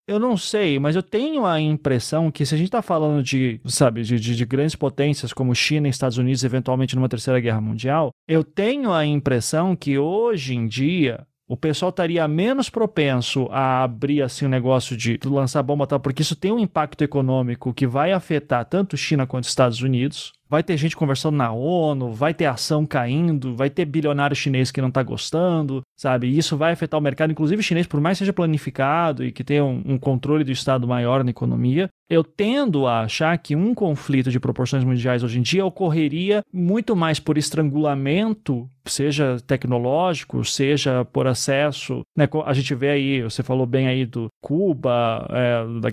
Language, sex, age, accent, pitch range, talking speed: Portuguese, male, 20-39, Brazilian, 130-165 Hz, 190 wpm